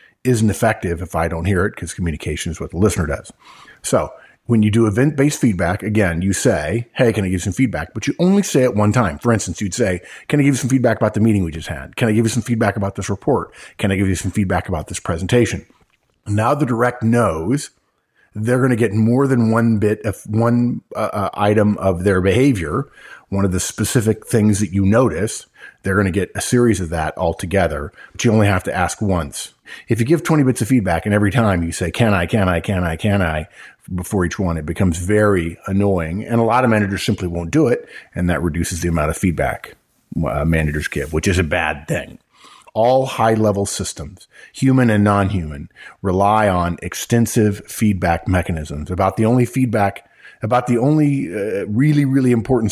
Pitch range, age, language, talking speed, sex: 90-115 Hz, 40-59, English, 210 wpm, male